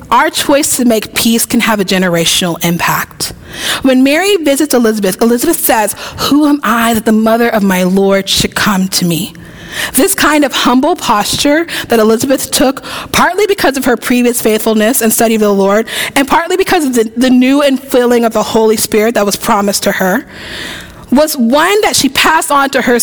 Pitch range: 205-295 Hz